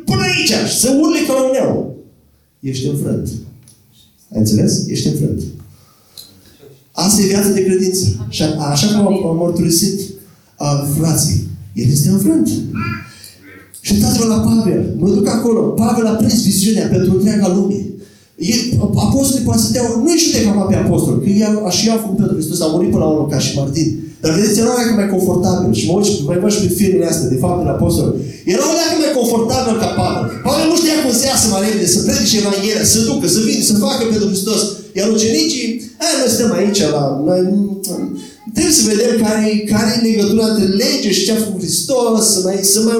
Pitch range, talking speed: 170-225 Hz, 195 wpm